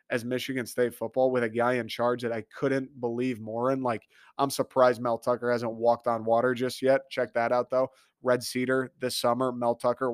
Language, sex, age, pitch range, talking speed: English, male, 30-49, 120-145 Hz, 215 wpm